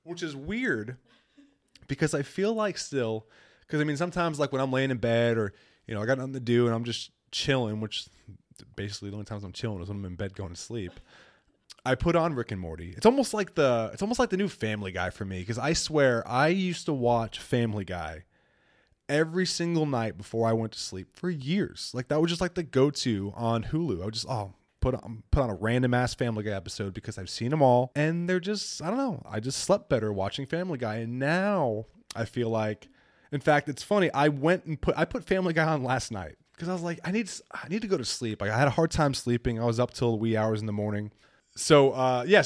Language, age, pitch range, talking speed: English, 20-39, 105-155 Hz, 245 wpm